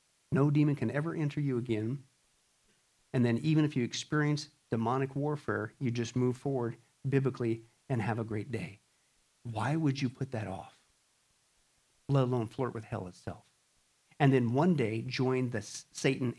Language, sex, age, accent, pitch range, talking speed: English, male, 50-69, American, 120-150 Hz, 160 wpm